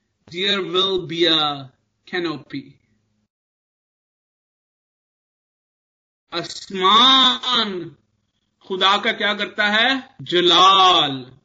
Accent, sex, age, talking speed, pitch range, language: native, male, 50-69, 65 wpm, 150-205 Hz, Hindi